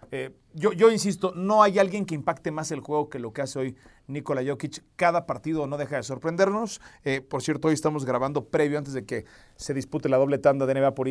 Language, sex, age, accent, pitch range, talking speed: Spanish, male, 40-59, Mexican, 130-165 Hz, 230 wpm